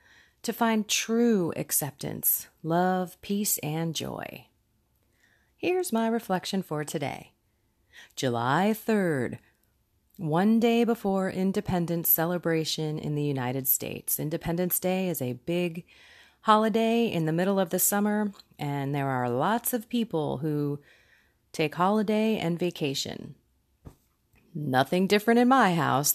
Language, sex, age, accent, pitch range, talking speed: English, female, 30-49, American, 145-190 Hz, 120 wpm